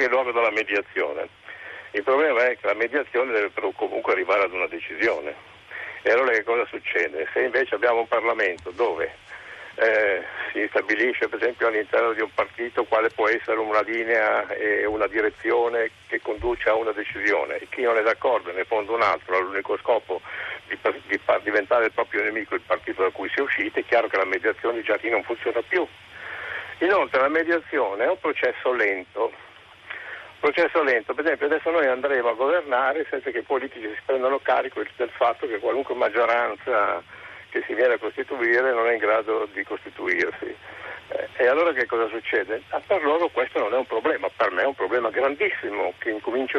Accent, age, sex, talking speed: native, 60-79, male, 185 wpm